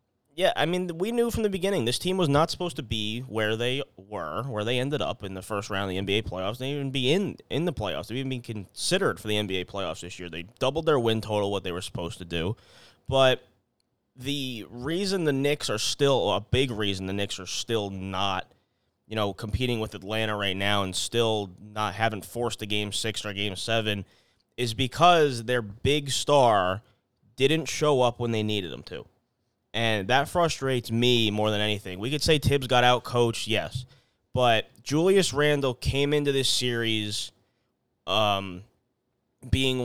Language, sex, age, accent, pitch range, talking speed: English, male, 20-39, American, 105-130 Hz, 195 wpm